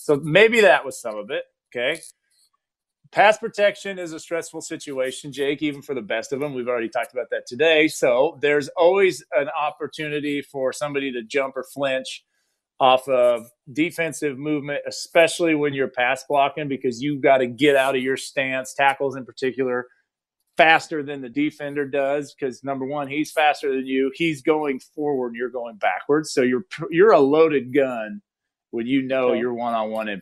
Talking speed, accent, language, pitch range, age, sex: 175 wpm, American, English, 130-165 Hz, 40-59, male